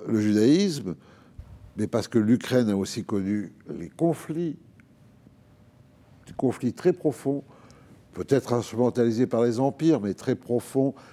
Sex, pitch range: male, 115-155 Hz